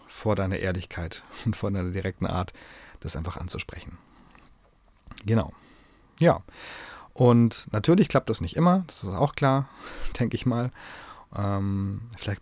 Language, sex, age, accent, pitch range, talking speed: German, male, 30-49, German, 95-120 Hz, 130 wpm